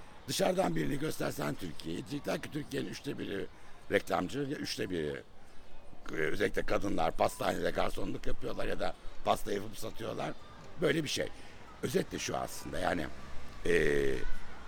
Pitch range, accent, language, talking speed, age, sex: 70-85 Hz, native, Turkish, 125 wpm, 60-79, male